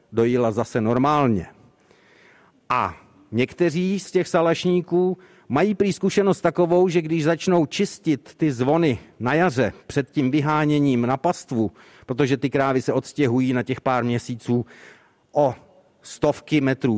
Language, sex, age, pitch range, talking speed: Czech, male, 60-79, 120-155 Hz, 125 wpm